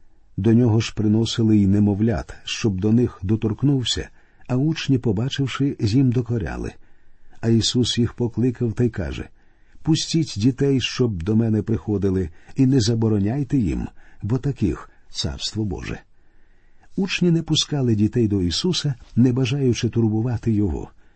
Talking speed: 135 wpm